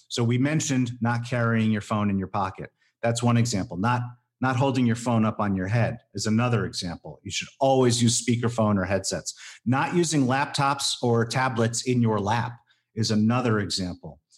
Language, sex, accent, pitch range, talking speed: English, male, American, 115-135 Hz, 180 wpm